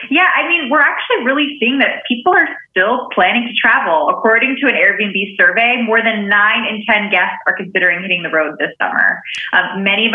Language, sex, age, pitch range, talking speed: English, female, 20-39, 195-245 Hz, 205 wpm